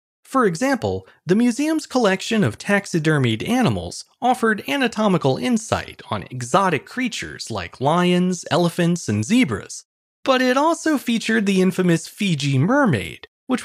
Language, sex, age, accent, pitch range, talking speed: English, male, 30-49, American, 145-230 Hz, 125 wpm